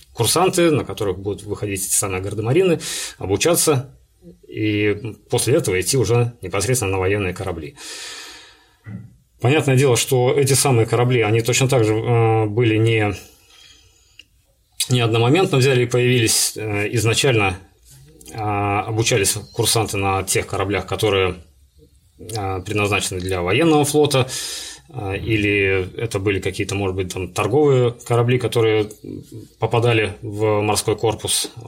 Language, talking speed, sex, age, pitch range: Russian, 110 wpm, male, 30-49, 95-125 Hz